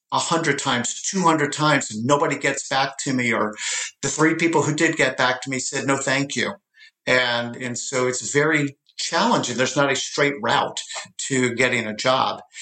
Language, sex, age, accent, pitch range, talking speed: English, male, 50-69, American, 125-145 Hz, 195 wpm